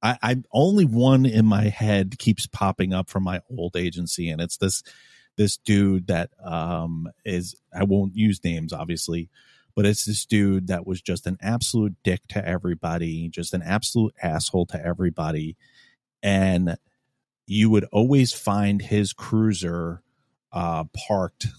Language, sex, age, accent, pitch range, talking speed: English, male, 30-49, American, 90-110 Hz, 150 wpm